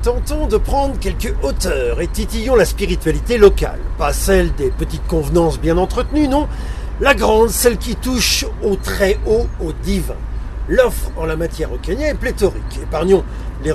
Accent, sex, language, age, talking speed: French, male, French, 40-59, 165 wpm